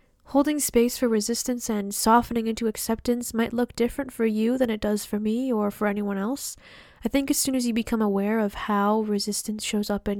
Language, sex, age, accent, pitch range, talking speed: English, female, 10-29, American, 210-235 Hz, 210 wpm